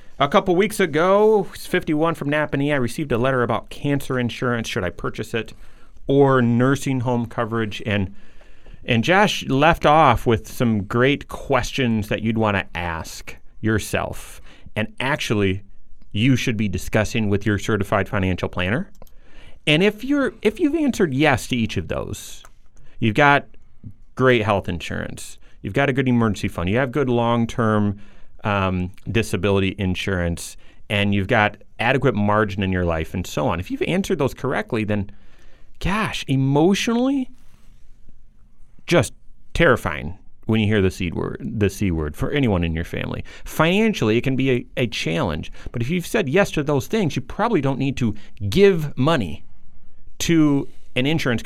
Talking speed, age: 160 wpm, 30-49